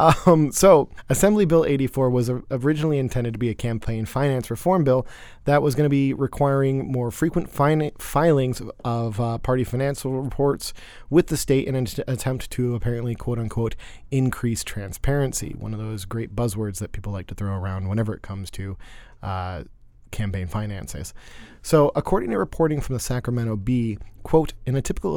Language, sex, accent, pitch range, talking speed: English, male, American, 110-140 Hz, 170 wpm